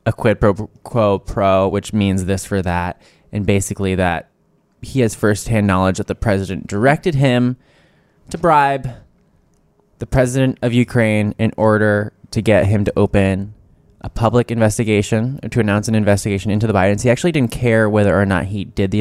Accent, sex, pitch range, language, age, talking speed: American, male, 95-120 Hz, English, 10-29, 175 wpm